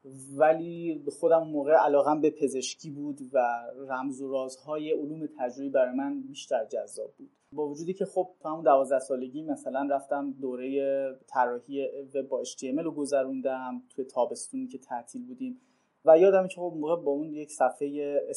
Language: Persian